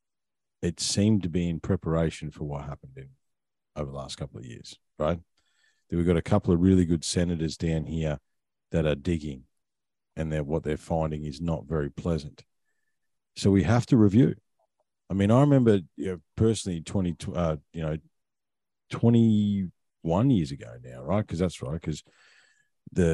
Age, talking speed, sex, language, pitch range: 40-59, 165 wpm, male, English, 80-105 Hz